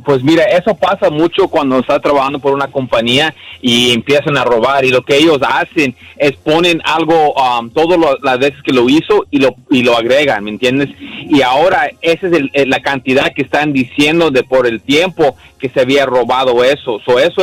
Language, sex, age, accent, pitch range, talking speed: Spanish, male, 40-59, Mexican, 135-180 Hz, 200 wpm